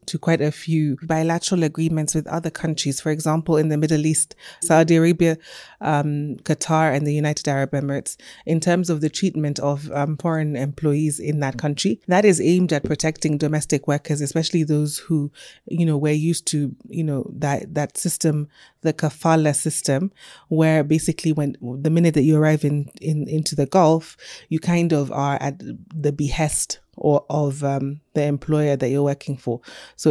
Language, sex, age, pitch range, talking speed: English, female, 20-39, 145-165 Hz, 175 wpm